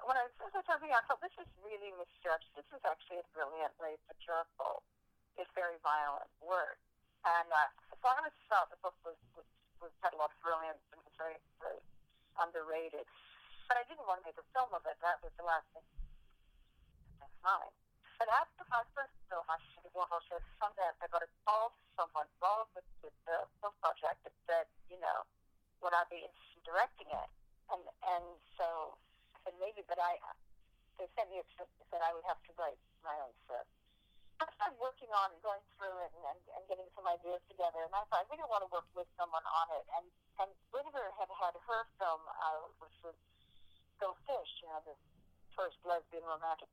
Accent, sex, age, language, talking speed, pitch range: American, female, 50-69, English, 190 wpm, 160-205 Hz